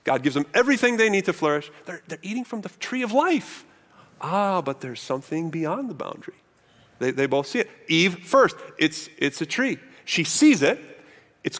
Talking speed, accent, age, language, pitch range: 195 wpm, American, 30-49, English, 155-225 Hz